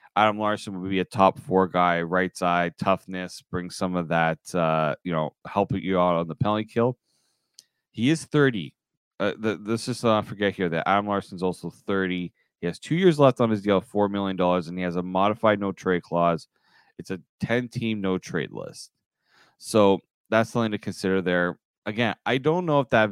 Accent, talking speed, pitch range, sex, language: American, 205 wpm, 85-105 Hz, male, English